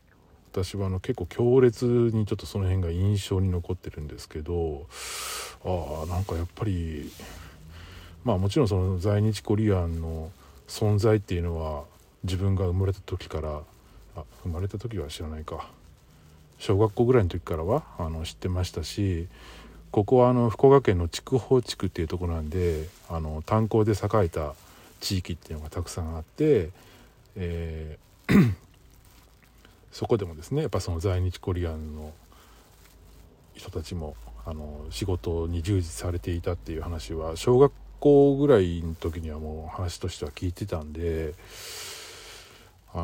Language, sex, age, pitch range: Japanese, male, 40-59, 80-105 Hz